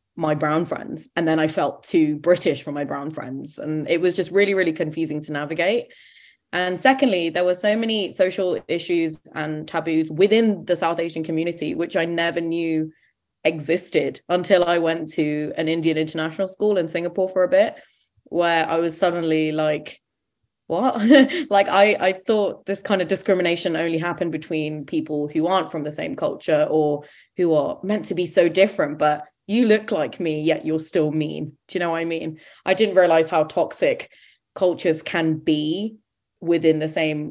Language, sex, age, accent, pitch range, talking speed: English, female, 20-39, British, 155-190 Hz, 180 wpm